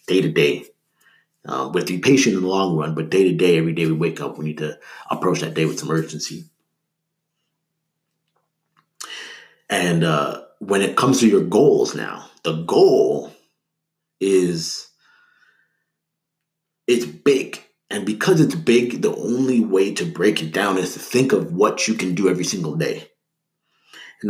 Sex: male